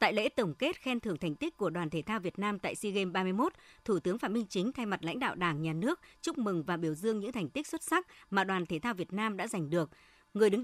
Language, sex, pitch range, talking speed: Vietnamese, male, 175-235 Hz, 290 wpm